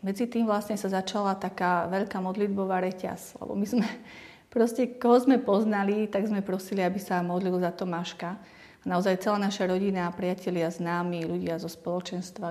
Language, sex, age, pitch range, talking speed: Slovak, female, 30-49, 180-205 Hz, 165 wpm